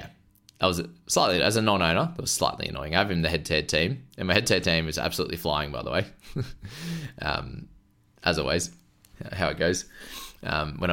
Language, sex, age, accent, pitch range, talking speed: English, male, 20-39, Australian, 85-105 Hz, 185 wpm